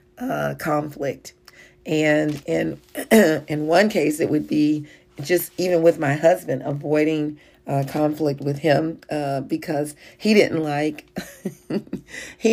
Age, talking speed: 40-59, 125 wpm